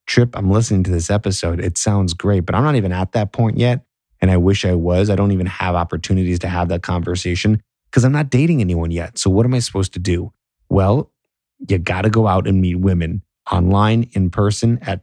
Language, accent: English, American